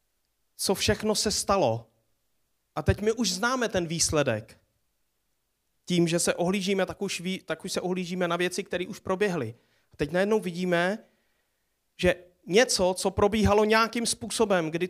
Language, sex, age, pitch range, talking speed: Czech, male, 30-49, 160-210 Hz, 155 wpm